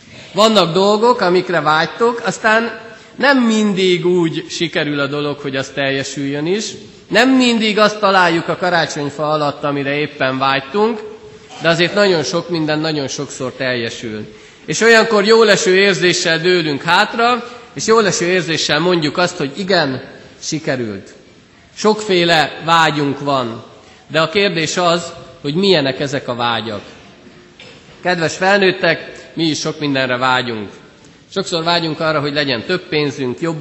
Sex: male